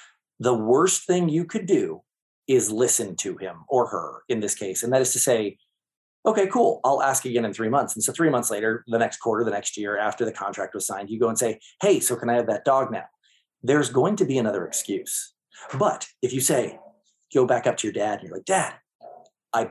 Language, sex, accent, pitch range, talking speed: English, male, American, 125-205 Hz, 235 wpm